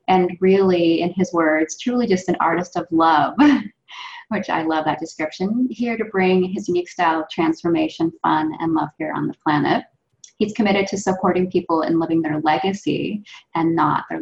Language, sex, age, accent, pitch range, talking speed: English, female, 20-39, American, 160-195 Hz, 180 wpm